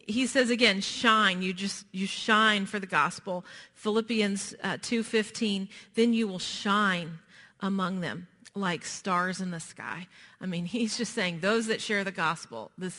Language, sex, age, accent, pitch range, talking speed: English, female, 40-59, American, 190-220 Hz, 165 wpm